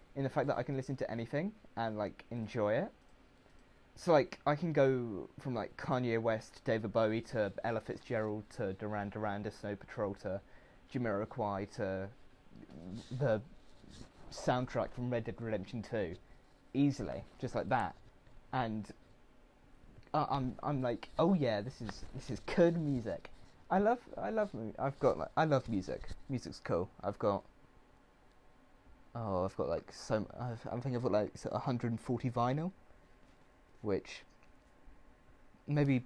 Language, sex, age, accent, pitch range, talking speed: English, male, 20-39, British, 105-140 Hz, 145 wpm